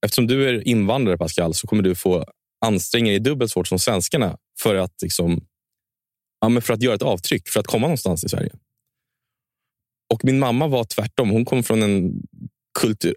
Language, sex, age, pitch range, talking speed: Swedish, male, 20-39, 95-130 Hz, 180 wpm